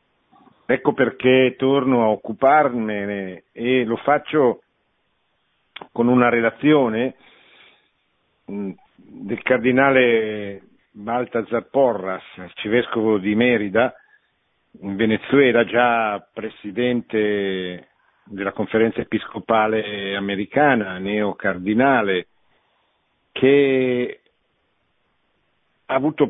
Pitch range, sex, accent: 100-120 Hz, male, native